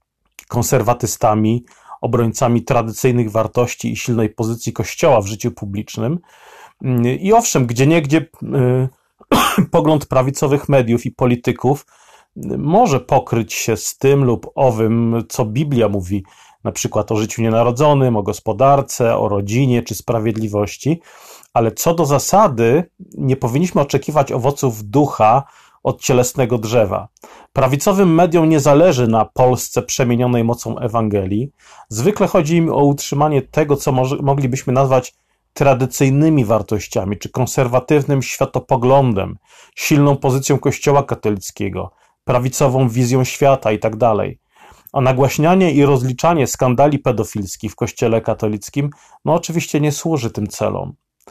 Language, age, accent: Polish, 40-59, native